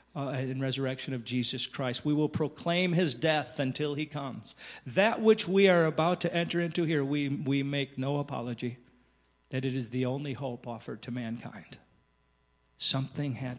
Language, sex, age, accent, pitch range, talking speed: English, male, 50-69, American, 120-150 Hz, 170 wpm